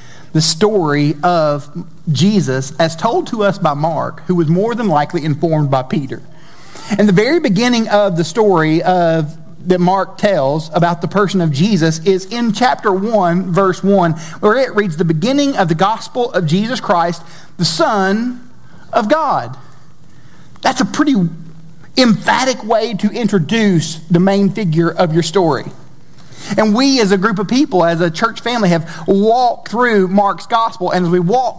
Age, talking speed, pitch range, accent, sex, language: 40-59, 165 wpm, 165-220 Hz, American, male, English